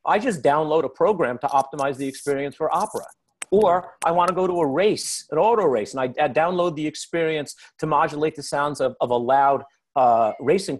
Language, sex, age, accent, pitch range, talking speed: English, male, 40-59, American, 140-205 Hz, 210 wpm